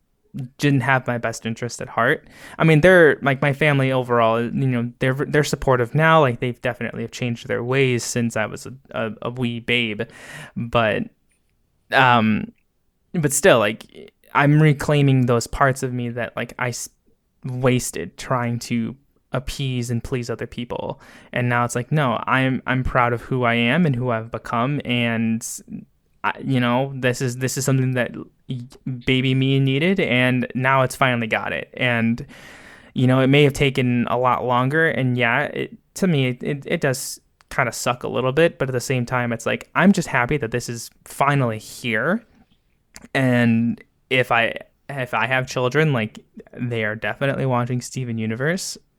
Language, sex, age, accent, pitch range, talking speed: English, male, 20-39, American, 120-135 Hz, 175 wpm